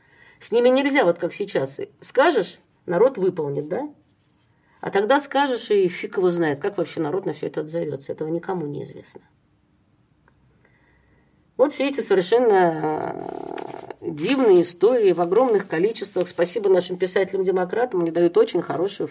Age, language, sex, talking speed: 40-59, Russian, female, 140 wpm